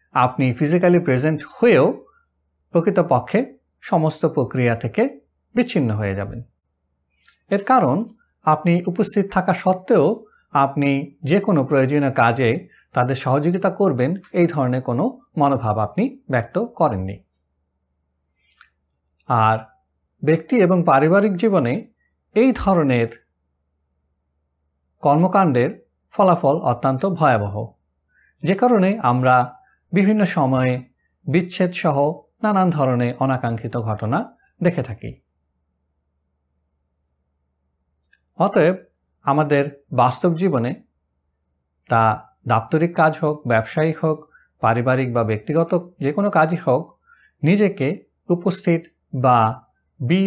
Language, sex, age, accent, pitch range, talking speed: Bengali, male, 50-69, native, 110-170 Hz, 90 wpm